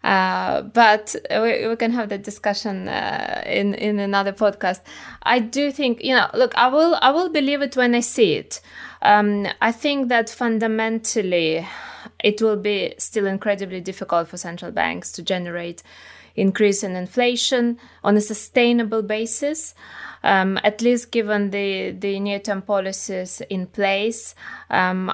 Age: 20-39